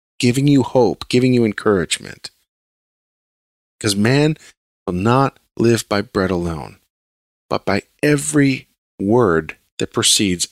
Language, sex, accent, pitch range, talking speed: English, male, American, 95-130 Hz, 115 wpm